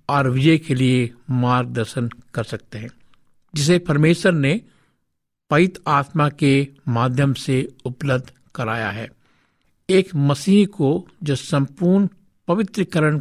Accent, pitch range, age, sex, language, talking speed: native, 125-160 Hz, 60-79, male, Hindi, 110 wpm